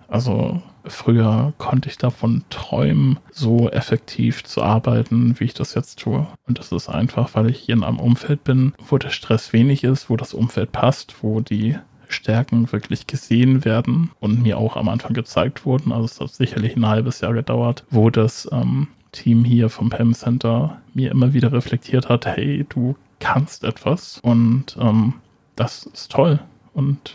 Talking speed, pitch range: 175 wpm, 115-135 Hz